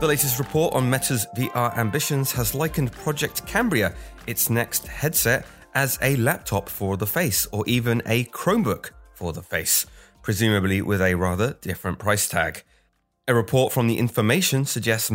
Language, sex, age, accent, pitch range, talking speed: English, male, 30-49, British, 100-135 Hz, 160 wpm